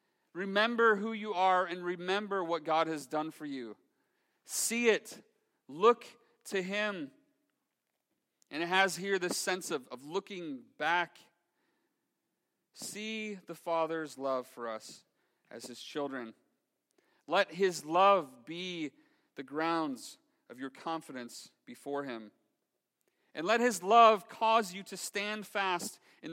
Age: 40-59